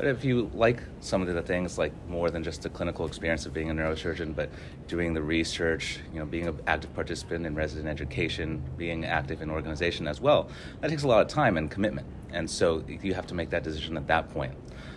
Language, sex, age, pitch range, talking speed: English, male, 30-49, 75-85 Hz, 235 wpm